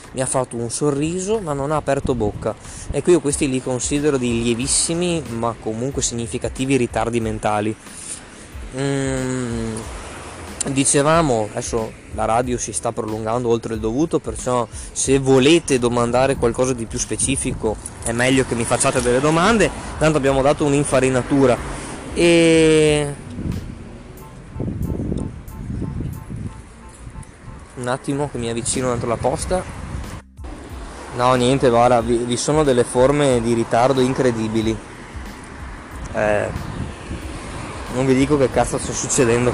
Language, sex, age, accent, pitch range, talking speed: Italian, male, 20-39, native, 115-140 Hz, 120 wpm